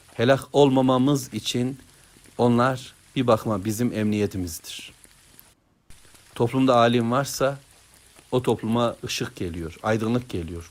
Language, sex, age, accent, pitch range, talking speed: Turkish, male, 60-79, native, 105-125 Hz, 95 wpm